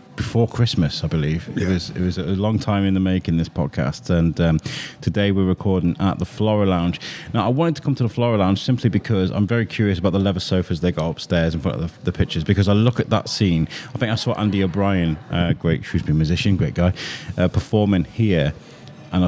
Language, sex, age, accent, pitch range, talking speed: English, male, 30-49, British, 90-115 Hz, 235 wpm